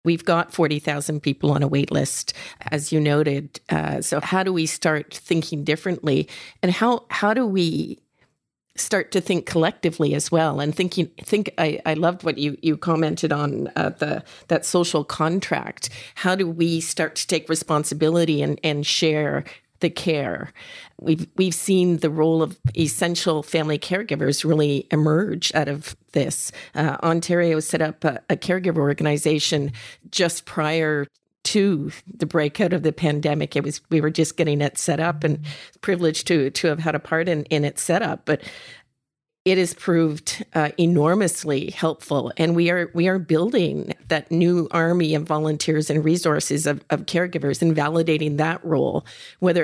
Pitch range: 150-170 Hz